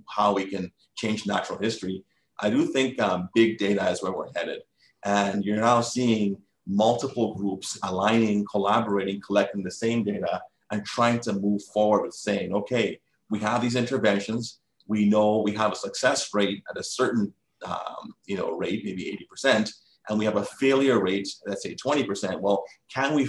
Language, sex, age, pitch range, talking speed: English, male, 30-49, 100-120 Hz, 175 wpm